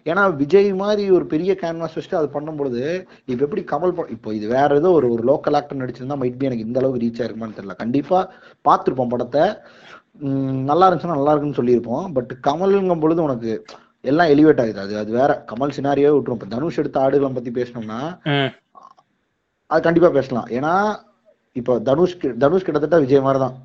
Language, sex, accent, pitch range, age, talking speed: Tamil, male, native, 120-160 Hz, 30-49, 145 wpm